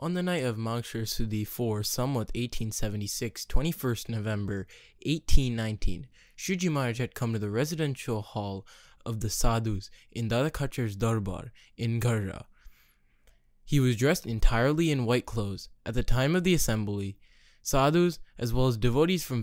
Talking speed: 140 wpm